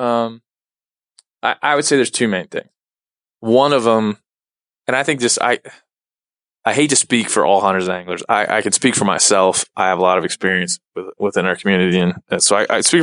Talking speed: 220 wpm